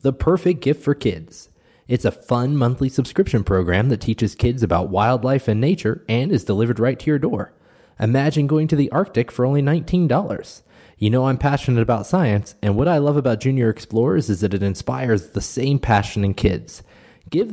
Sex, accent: male, American